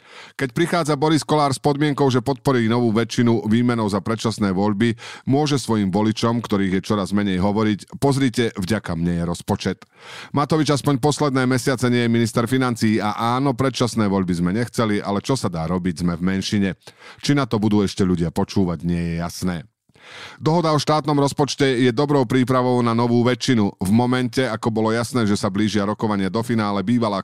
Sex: male